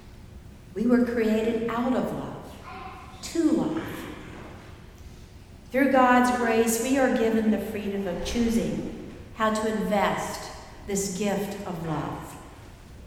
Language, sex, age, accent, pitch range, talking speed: English, female, 60-79, American, 175-235 Hz, 115 wpm